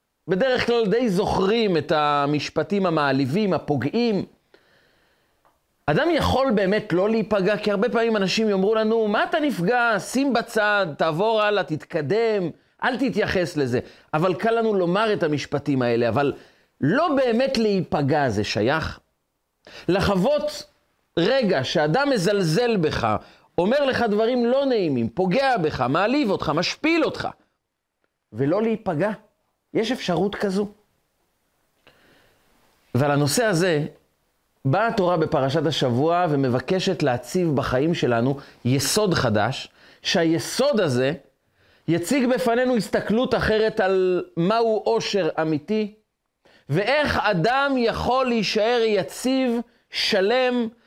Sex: male